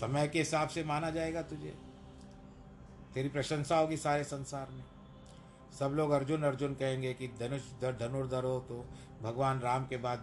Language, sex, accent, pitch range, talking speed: Hindi, male, native, 110-140 Hz, 160 wpm